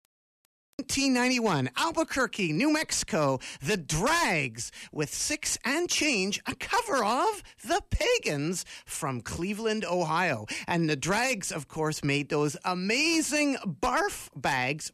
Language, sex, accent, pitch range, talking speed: English, male, American, 145-230 Hz, 115 wpm